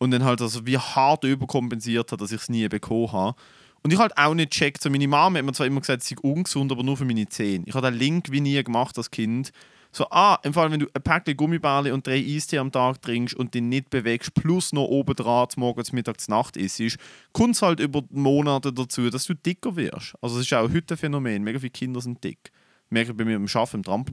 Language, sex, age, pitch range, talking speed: German, male, 30-49, 120-150 Hz, 250 wpm